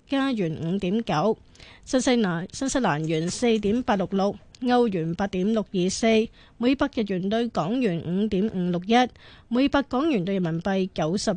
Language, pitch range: Chinese, 190-245 Hz